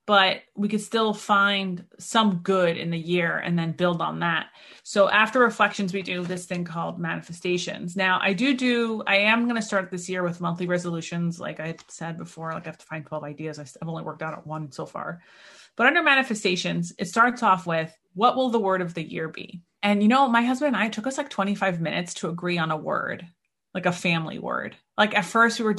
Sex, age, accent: female, 30-49, American